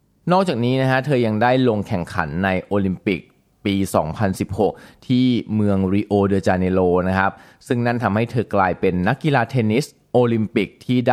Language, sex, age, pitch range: Thai, male, 20-39, 90-120 Hz